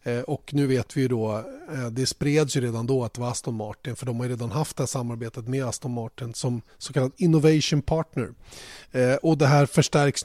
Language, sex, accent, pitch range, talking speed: Swedish, male, native, 120-145 Hz, 210 wpm